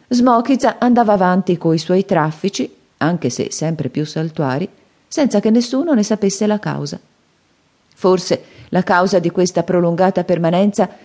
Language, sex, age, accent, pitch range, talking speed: Italian, female, 40-59, native, 160-215 Hz, 140 wpm